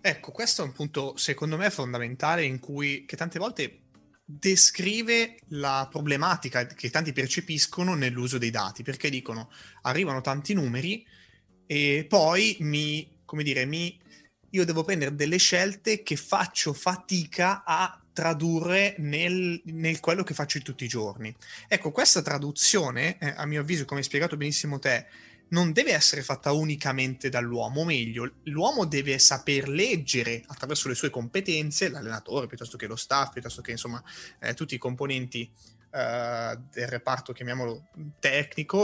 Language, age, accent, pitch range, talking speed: Italian, 20-39, native, 130-175 Hz, 145 wpm